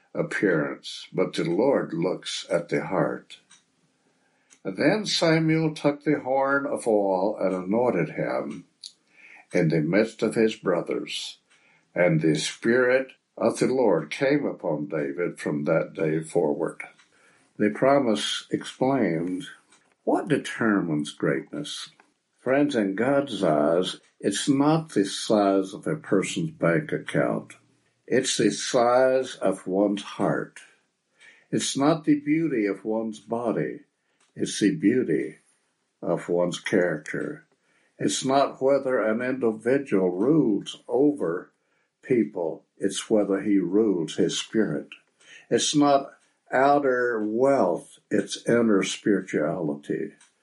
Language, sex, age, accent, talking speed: English, male, 60-79, American, 115 wpm